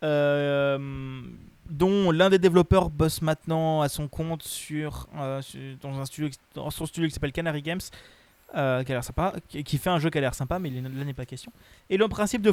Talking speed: 215 wpm